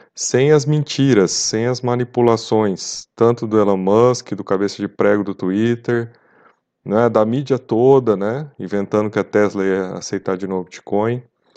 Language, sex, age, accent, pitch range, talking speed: Portuguese, male, 20-39, Brazilian, 105-140 Hz, 155 wpm